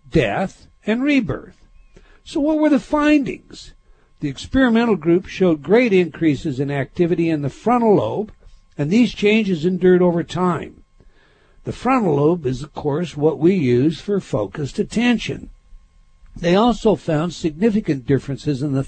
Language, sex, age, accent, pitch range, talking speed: English, male, 60-79, American, 145-210 Hz, 145 wpm